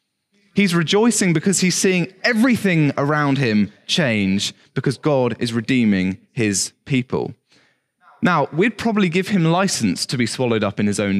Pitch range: 135-190 Hz